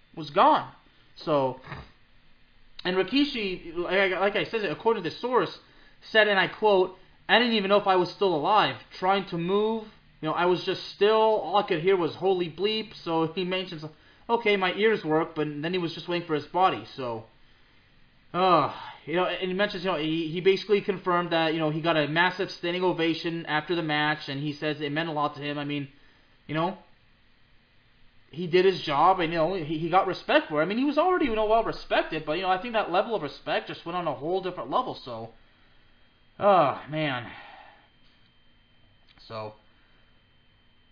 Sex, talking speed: male, 200 wpm